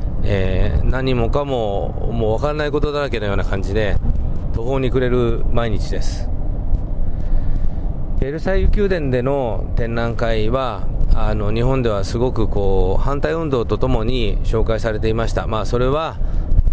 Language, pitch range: Japanese, 90-120 Hz